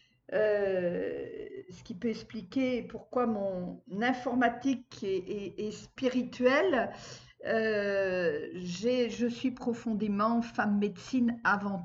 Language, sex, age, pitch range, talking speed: French, female, 50-69, 210-255 Hz, 100 wpm